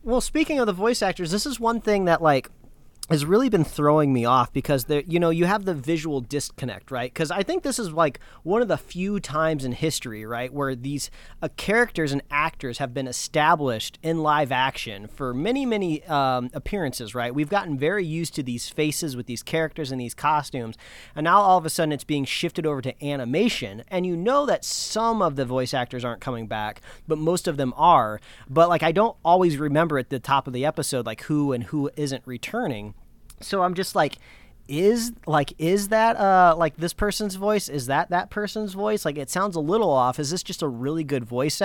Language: English